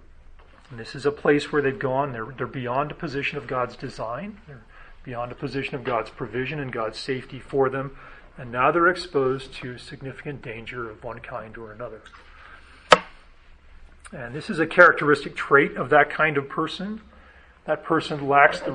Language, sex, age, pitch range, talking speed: English, male, 40-59, 115-145 Hz, 175 wpm